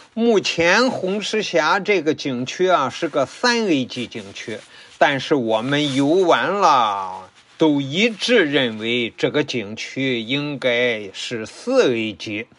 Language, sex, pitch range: Chinese, male, 125-215 Hz